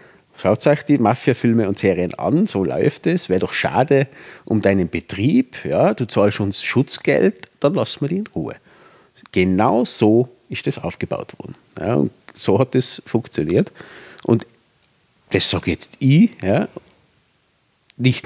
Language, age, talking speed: German, 50-69, 155 wpm